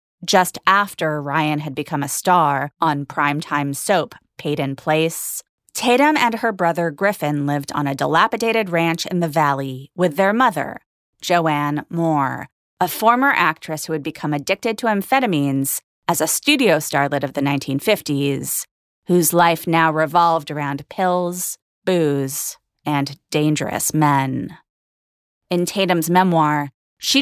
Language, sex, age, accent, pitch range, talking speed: English, female, 30-49, American, 145-190 Hz, 135 wpm